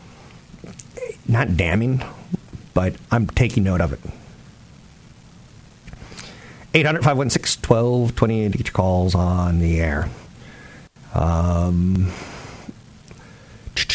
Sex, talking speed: male, 50 wpm